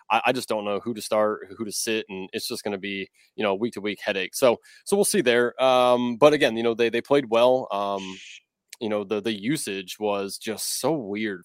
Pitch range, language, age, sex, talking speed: 105-135 Hz, English, 20-39, male, 240 wpm